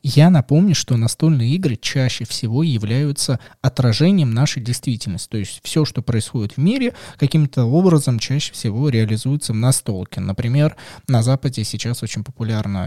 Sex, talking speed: male, 145 wpm